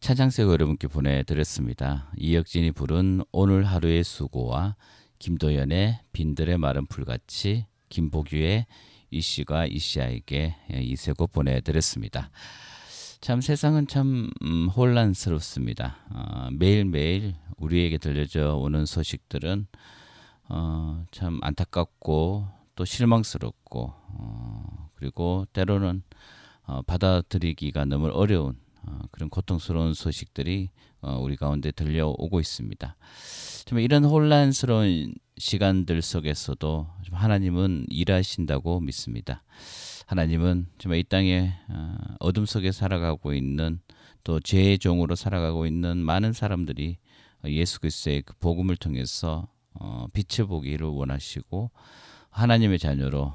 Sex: male